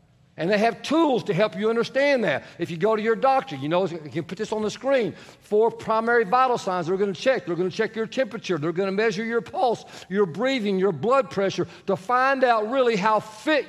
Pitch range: 195-250 Hz